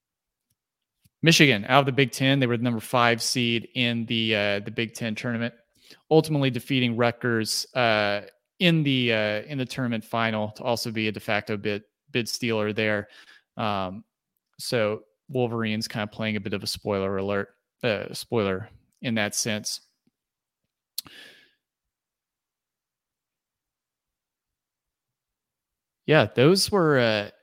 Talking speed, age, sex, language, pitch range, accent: 135 wpm, 30-49, male, English, 105-125 Hz, American